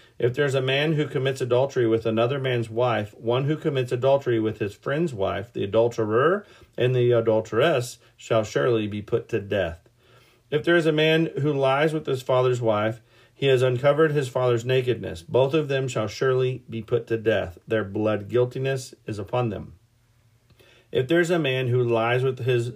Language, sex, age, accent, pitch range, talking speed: English, male, 40-59, American, 115-130 Hz, 190 wpm